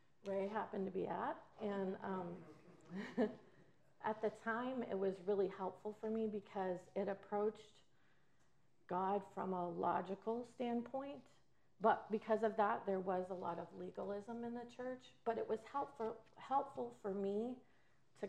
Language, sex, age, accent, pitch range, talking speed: English, female, 40-59, American, 190-220 Hz, 150 wpm